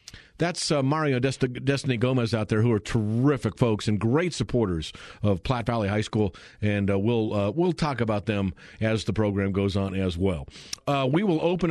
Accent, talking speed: American, 200 wpm